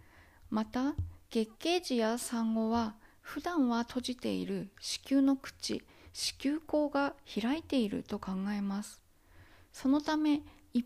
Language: Japanese